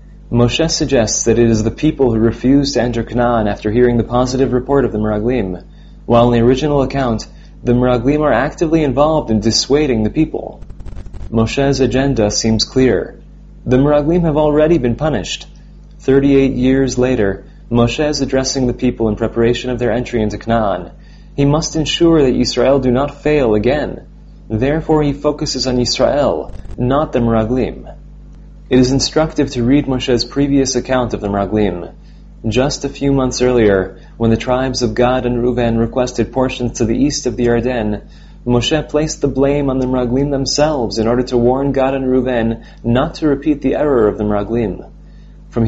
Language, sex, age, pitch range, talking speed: English, male, 30-49, 115-140 Hz, 170 wpm